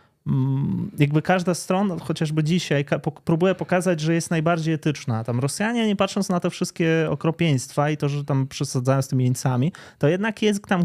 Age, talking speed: 20-39, 175 wpm